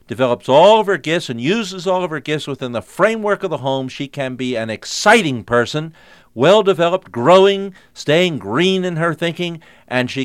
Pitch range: 110-145 Hz